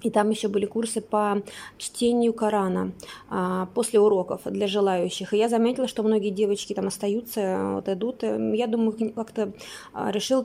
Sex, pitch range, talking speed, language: female, 205-230 Hz, 155 wpm, Russian